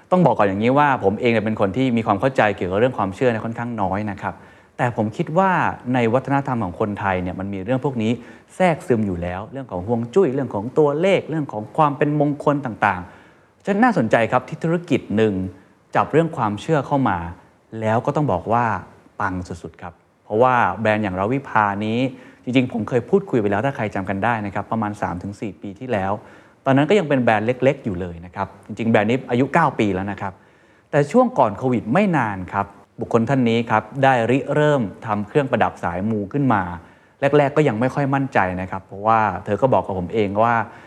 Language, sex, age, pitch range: Thai, male, 20-39, 100-135 Hz